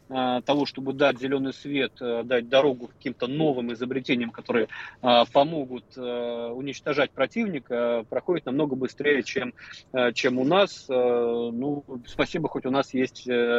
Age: 30-49